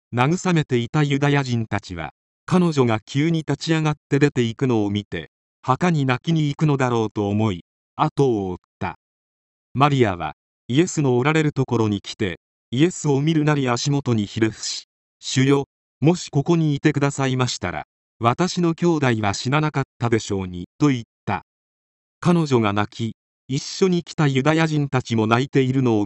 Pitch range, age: 105-150 Hz, 40-59